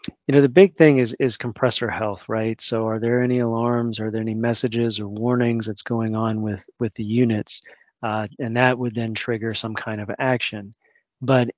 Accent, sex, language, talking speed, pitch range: American, male, English, 200 wpm, 110-130 Hz